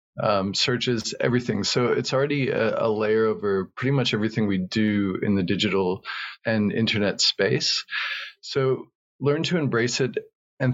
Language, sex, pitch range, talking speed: English, male, 105-125 Hz, 150 wpm